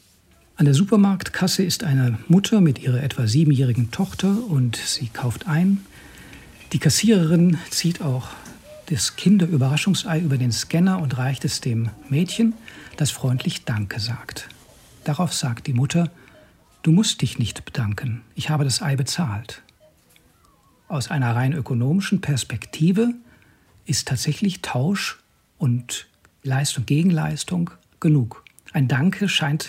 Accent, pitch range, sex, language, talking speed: German, 125-170 Hz, male, German, 125 wpm